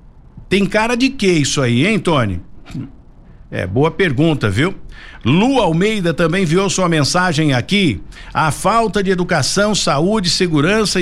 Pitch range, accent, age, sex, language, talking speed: 135-205 Hz, Brazilian, 60-79, male, Portuguese, 135 wpm